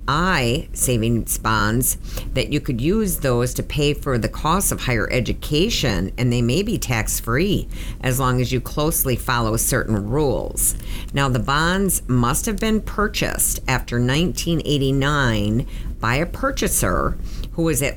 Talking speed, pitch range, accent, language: 145 wpm, 115-140 Hz, American, English